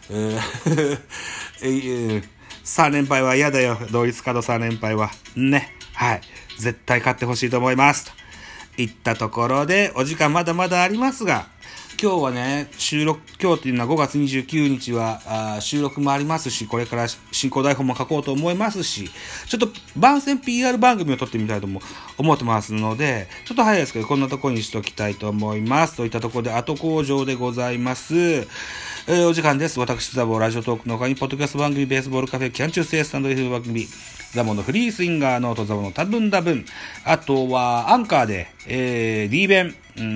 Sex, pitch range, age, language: male, 120-155 Hz, 30-49, Japanese